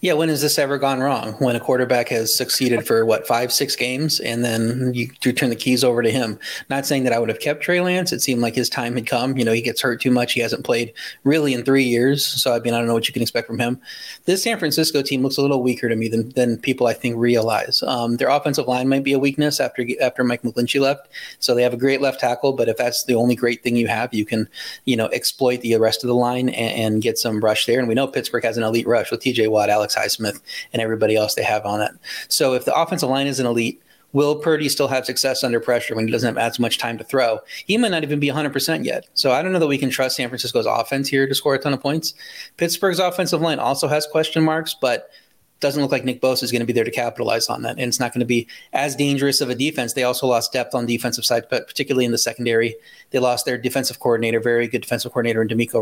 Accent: American